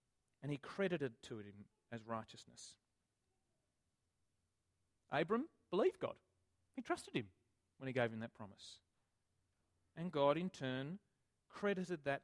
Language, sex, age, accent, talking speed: English, male, 40-59, Australian, 125 wpm